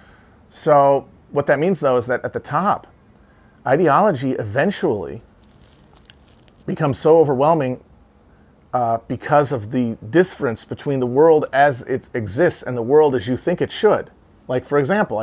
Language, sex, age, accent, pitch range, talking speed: English, male, 40-59, American, 115-145 Hz, 145 wpm